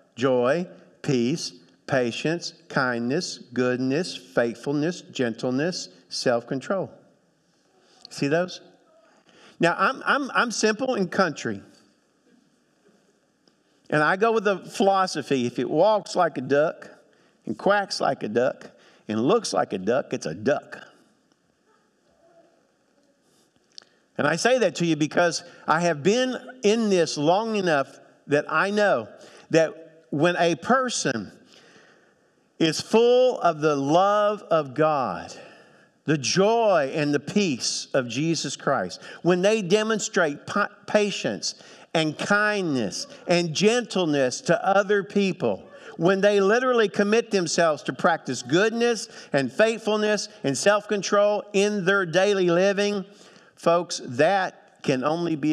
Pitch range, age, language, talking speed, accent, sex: 150-210 Hz, 50-69, English, 120 wpm, American, male